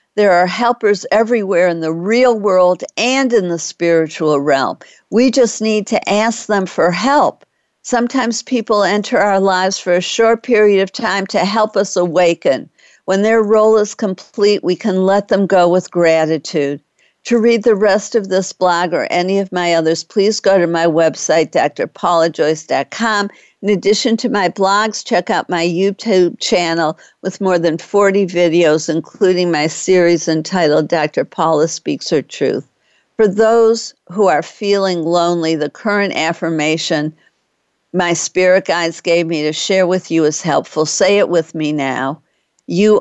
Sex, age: female, 60-79